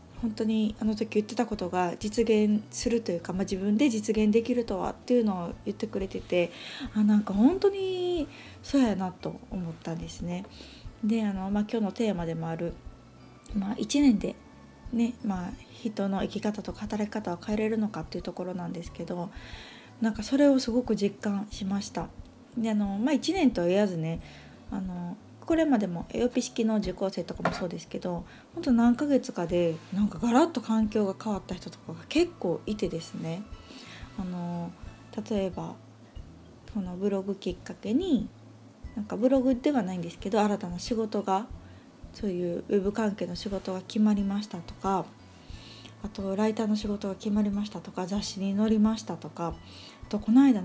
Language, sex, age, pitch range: Japanese, female, 20-39, 185-230 Hz